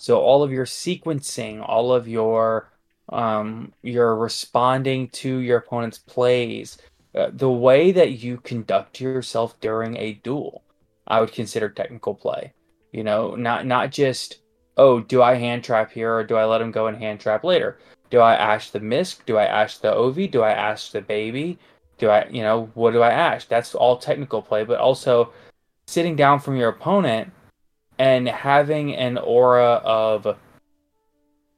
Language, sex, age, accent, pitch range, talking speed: English, male, 20-39, American, 110-135 Hz, 175 wpm